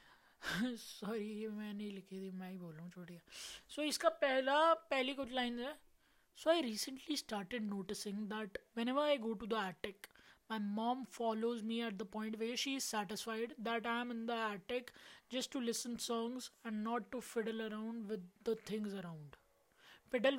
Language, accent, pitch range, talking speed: Hindi, native, 215-260 Hz, 180 wpm